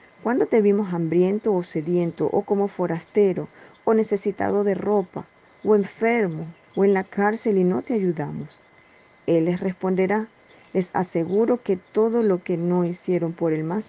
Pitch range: 170-210 Hz